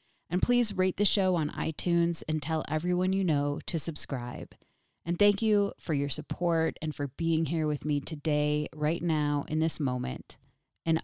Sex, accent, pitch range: female, American, 150-180 Hz